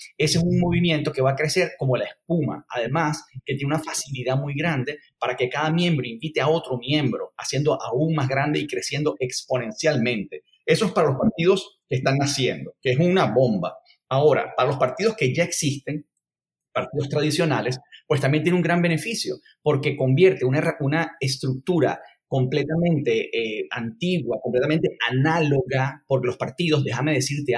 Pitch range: 130-170 Hz